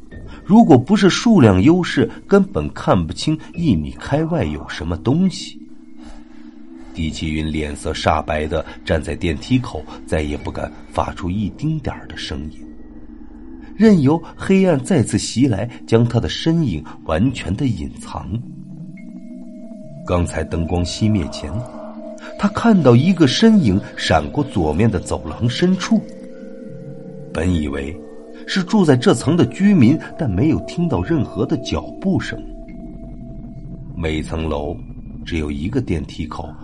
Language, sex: Chinese, male